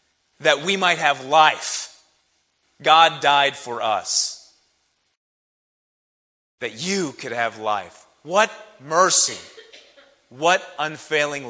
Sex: male